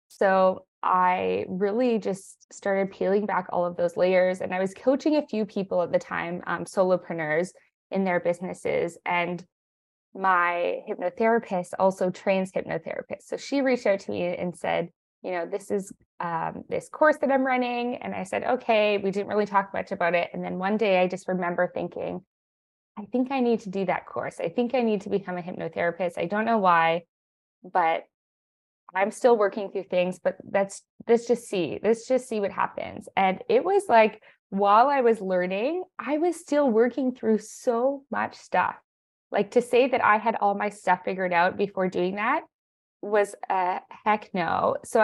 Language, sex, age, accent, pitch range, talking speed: English, female, 20-39, American, 180-230 Hz, 185 wpm